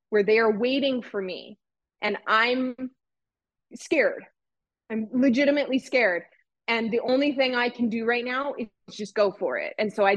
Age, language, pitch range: 20-39, English, 200-255 Hz